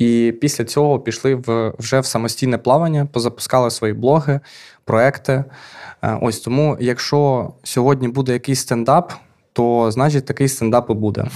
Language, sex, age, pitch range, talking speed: Ukrainian, male, 20-39, 115-130 Hz, 135 wpm